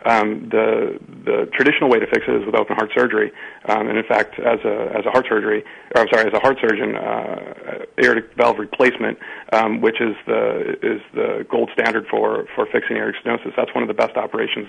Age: 40-59